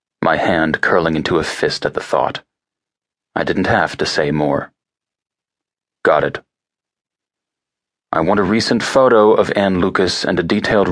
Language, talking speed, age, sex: English, 155 wpm, 30-49, male